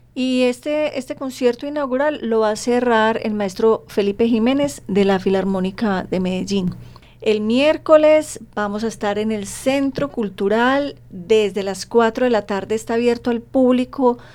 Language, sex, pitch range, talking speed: Spanish, female, 195-235 Hz, 155 wpm